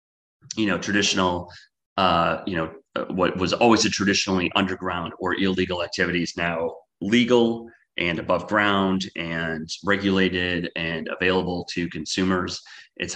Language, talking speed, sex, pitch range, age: English, 125 wpm, male, 80-95 Hz, 30-49